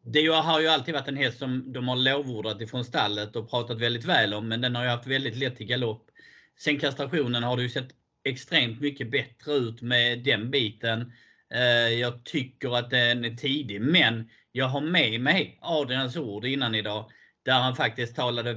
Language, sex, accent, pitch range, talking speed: Swedish, male, native, 115-140 Hz, 185 wpm